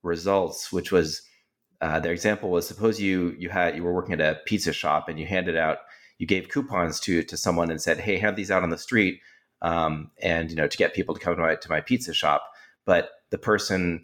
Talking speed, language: 235 wpm, English